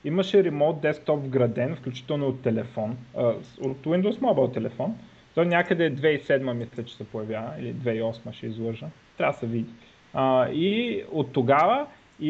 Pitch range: 130-175 Hz